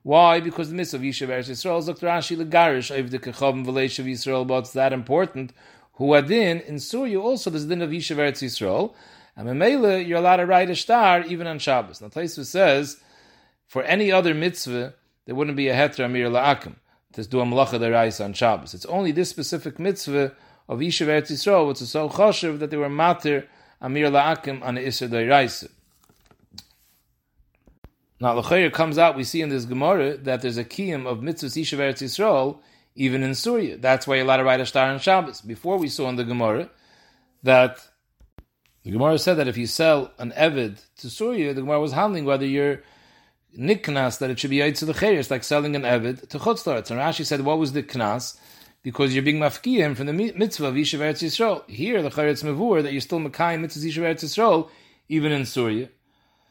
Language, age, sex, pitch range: English, 30-49, male, 130-165 Hz